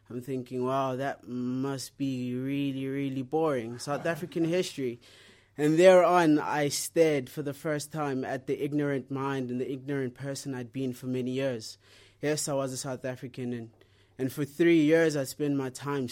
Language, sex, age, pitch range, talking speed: English, male, 20-39, 120-150 Hz, 180 wpm